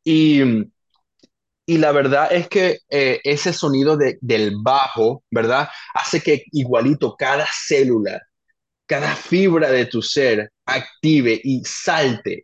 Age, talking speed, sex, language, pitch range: 20-39, 125 wpm, male, Spanish, 110-150 Hz